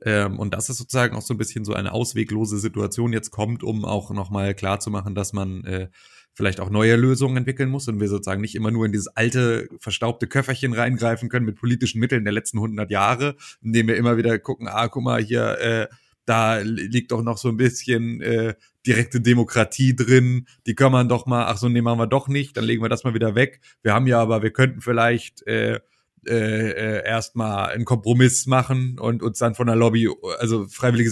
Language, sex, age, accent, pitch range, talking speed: German, male, 30-49, German, 105-120 Hz, 205 wpm